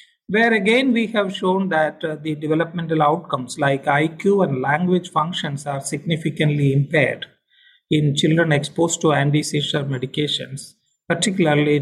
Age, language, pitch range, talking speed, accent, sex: 50-69, English, 150-200 Hz, 125 wpm, Indian, male